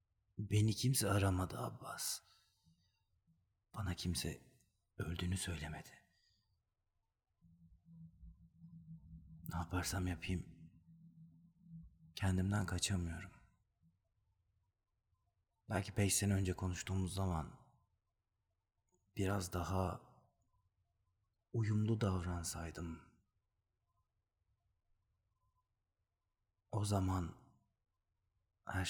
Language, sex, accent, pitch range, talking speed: Turkish, male, native, 90-100 Hz, 55 wpm